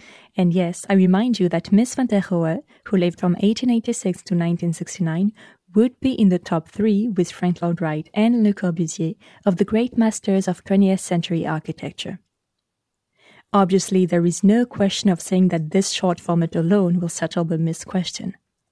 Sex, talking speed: female, 185 wpm